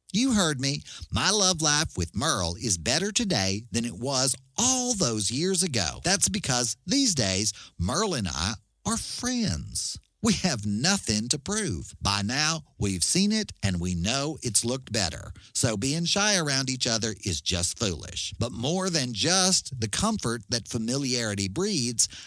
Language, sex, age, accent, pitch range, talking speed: English, male, 50-69, American, 100-165 Hz, 165 wpm